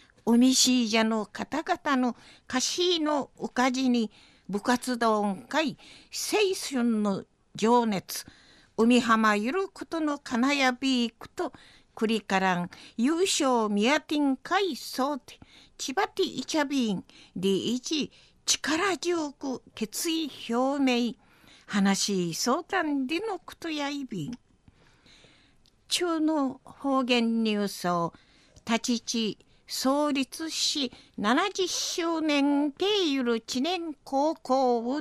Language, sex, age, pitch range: Japanese, female, 50-69, 230-315 Hz